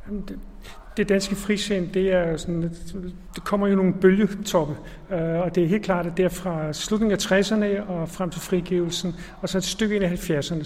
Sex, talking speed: male, 180 wpm